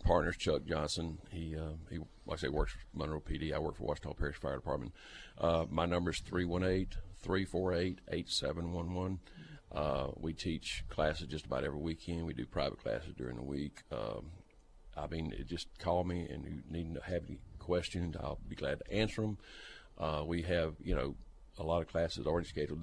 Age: 50-69